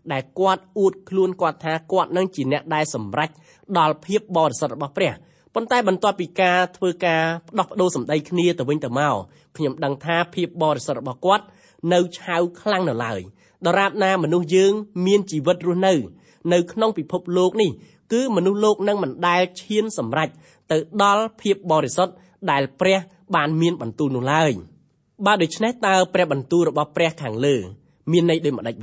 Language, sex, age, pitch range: English, male, 20-39, 150-190 Hz